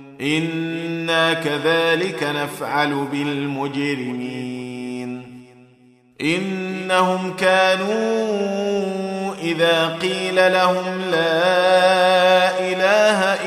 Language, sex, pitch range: Arabic, male, 140-185 Hz